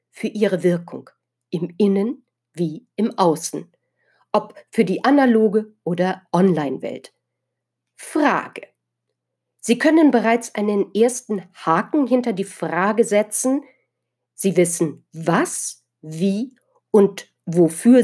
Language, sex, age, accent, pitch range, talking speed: German, female, 50-69, German, 175-250 Hz, 105 wpm